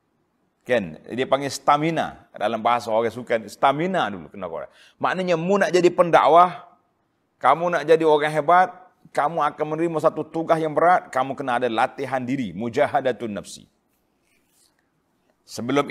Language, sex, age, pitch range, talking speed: Malay, male, 30-49, 130-155 Hz, 145 wpm